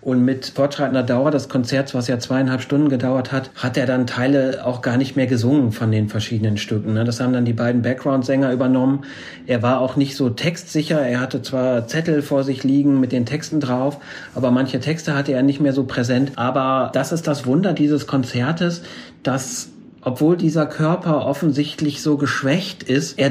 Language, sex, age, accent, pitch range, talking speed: German, male, 40-59, German, 130-155 Hz, 190 wpm